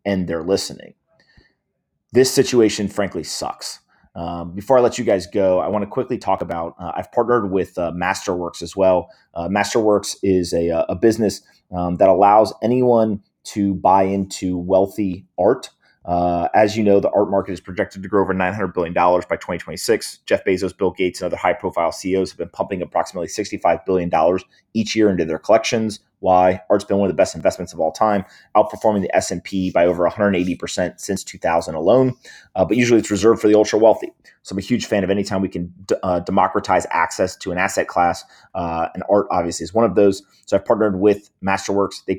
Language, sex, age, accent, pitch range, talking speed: English, male, 30-49, American, 90-105 Hz, 200 wpm